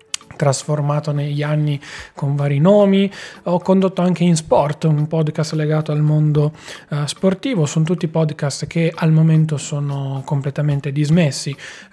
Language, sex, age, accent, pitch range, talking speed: Italian, male, 20-39, native, 145-165 Hz, 130 wpm